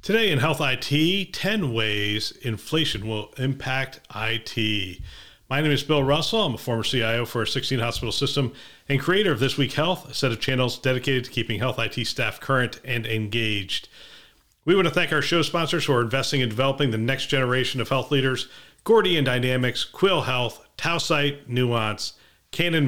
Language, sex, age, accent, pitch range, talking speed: English, male, 40-59, American, 115-140 Hz, 180 wpm